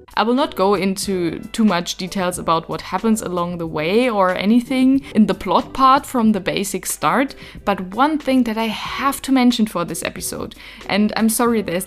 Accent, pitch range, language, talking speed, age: German, 190-270 Hz, English, 195 wpm, 20-39